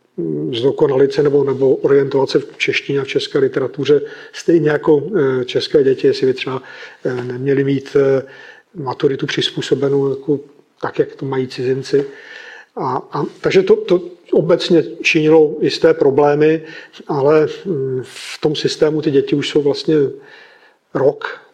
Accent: native